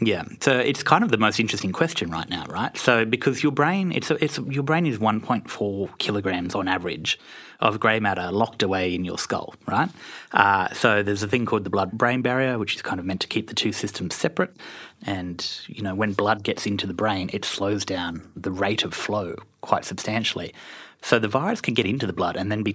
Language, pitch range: English, 95-115 Hz